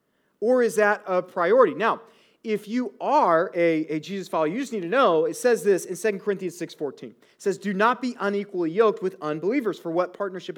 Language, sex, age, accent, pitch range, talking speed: English, male, 30-49, American, 180-235 Hz, 210 wpm